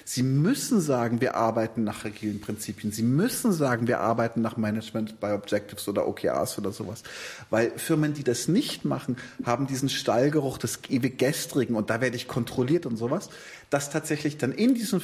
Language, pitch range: German, 115-170 Hz